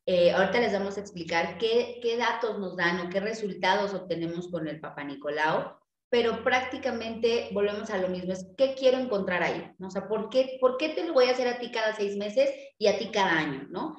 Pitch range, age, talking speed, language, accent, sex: 190-255 Hz, 30-49, 225 wpm, Spanish, Mexican, female